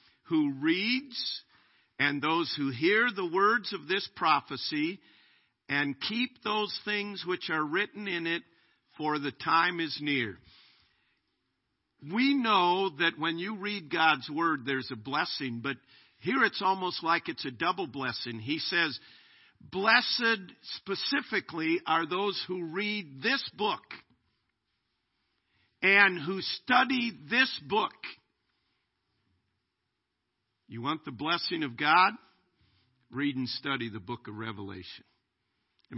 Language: English